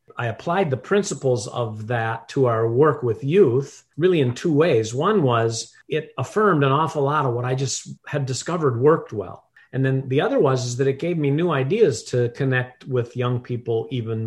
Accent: American